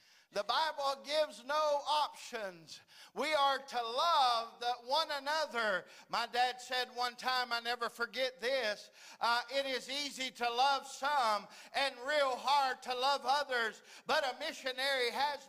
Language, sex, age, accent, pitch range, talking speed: English, male, 50-69, American, 205-310 Hz, 145 wpm